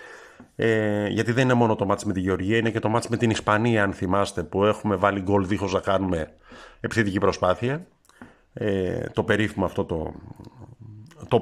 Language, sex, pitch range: Greek, male, 100-120 Hz